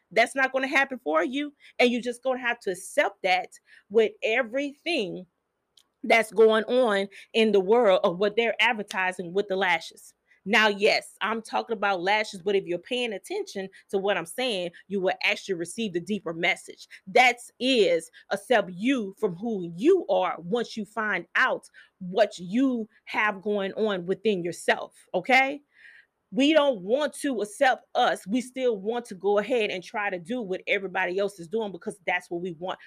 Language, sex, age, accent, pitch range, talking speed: English, female, 30-49, American, 200-255 Hz, 185 wpm